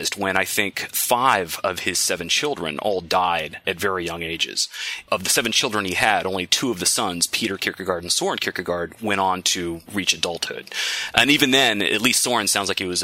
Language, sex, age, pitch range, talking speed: English, male, 30-49, 90-105 Hz, 205 wpm